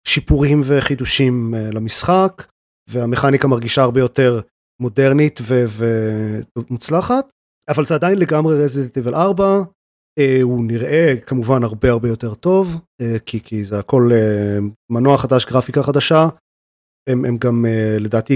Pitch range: 125-155 Hz